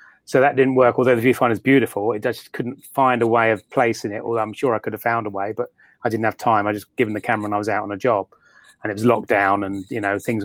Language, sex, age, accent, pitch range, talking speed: English, male, 30-49, British, 105-115 Hz, 305 wpm